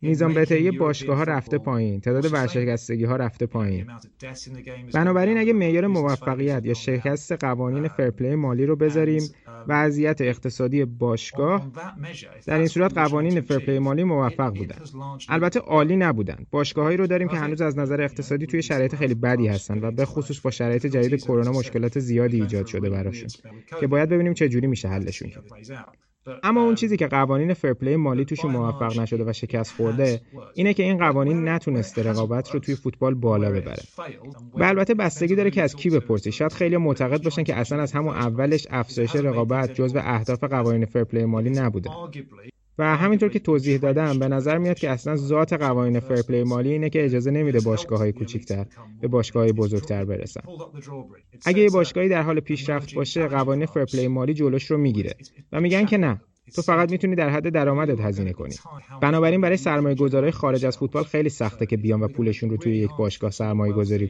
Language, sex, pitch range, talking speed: Persian, male, 115-155 Hz, 170 wpm